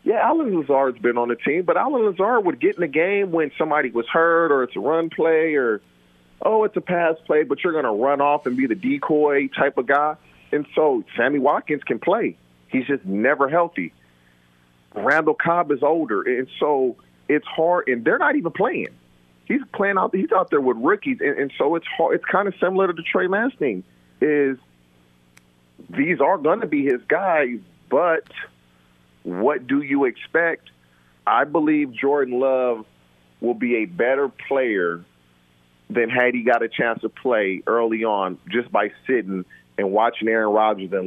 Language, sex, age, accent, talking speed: English, male, 40-59, American, 185 wpm